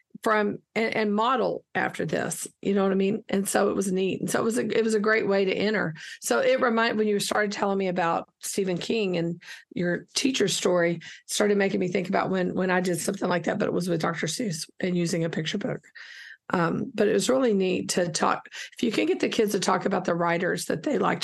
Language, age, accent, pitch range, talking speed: English, 50-69, American, 175-210 Hz, 250 wpm